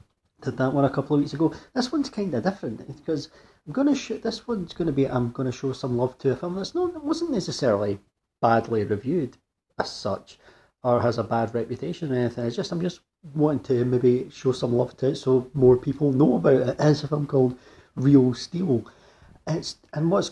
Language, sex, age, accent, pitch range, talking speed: English, male, 40-59, British, 115-135 Hz, 220 wpm